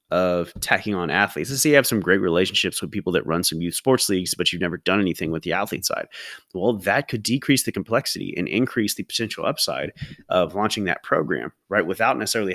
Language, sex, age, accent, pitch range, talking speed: English, male, 30-49, American, 90-110 Hz, 220 wpm